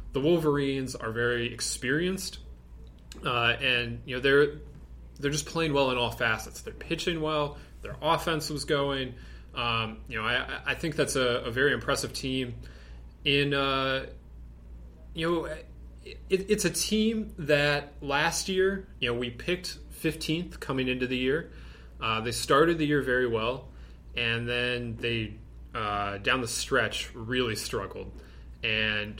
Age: 20-39